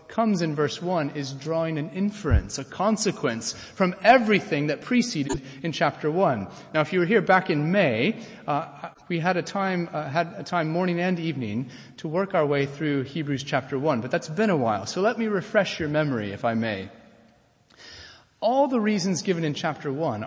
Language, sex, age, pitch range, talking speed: English, male, 30-49, 130-190 Hz, 195 wpm